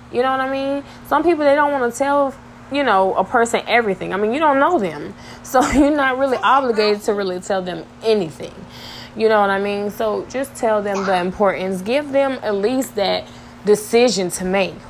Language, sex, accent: English, female, American